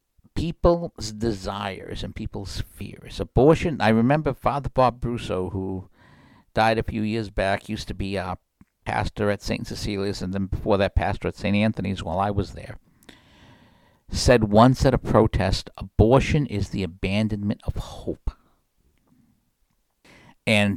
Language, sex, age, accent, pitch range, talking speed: English, male, 60-79, American, 95-115 Hz, 140 wpm